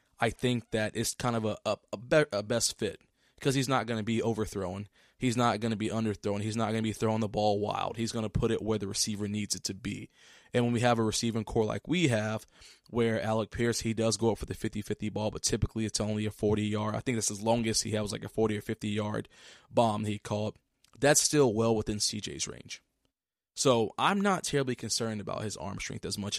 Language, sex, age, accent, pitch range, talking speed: English, male, 20-39, American, 105-125 Hz, 245 wpm